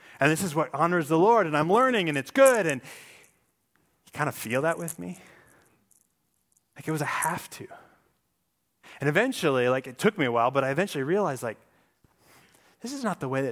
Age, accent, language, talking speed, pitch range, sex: 30-49, American, English, 205 wpm, 130-185 Hz, male